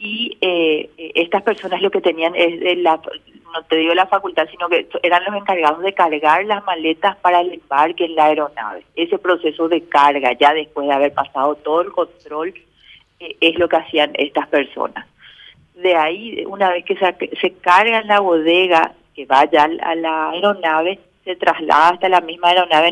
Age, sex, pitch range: 40-59, female, 150-175 Hz